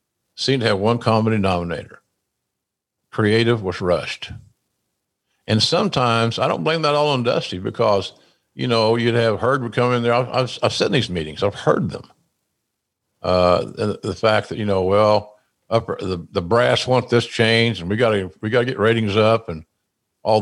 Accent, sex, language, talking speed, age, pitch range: American, male, English, 185 wpm, 50-69, 95-120 Hz